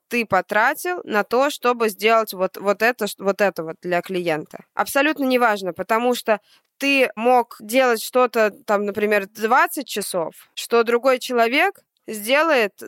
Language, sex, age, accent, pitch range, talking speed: Russian, female, 20-39, native, 205-245 Hz, 140 wpm